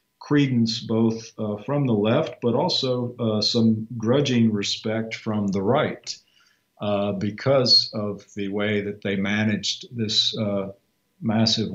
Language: English